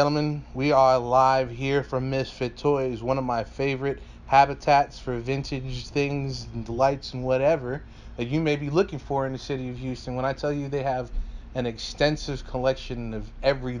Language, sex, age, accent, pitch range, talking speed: English, male, 20-39, American, 125-150 Hz, 185 wpm